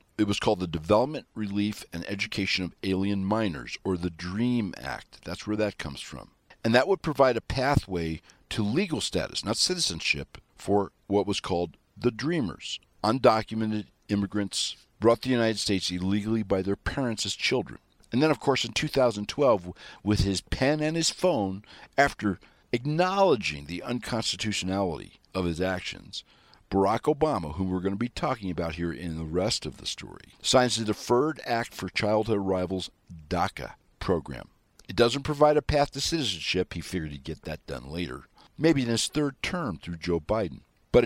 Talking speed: 170 wpm